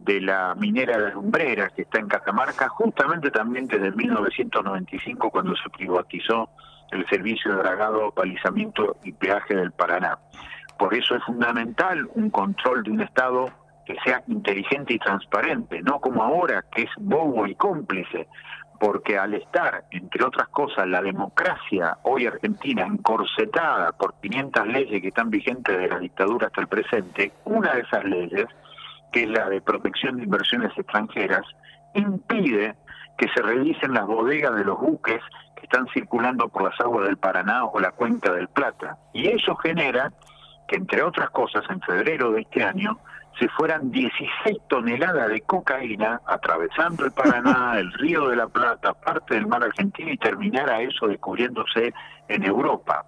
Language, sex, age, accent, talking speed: Spanish, male, 50-69, Argentinian, 160 wpm